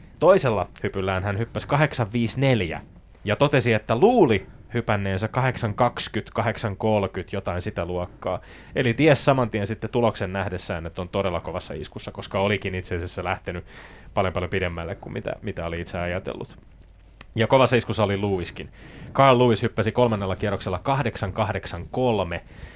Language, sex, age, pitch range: Finnish, male, 20-39, 90-115 Hz